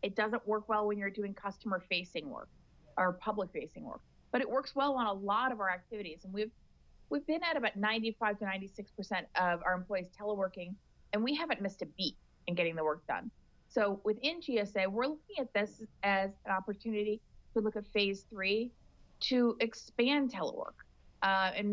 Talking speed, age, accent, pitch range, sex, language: 180 wpm, 30-49, American, 190-225 Hz, female, English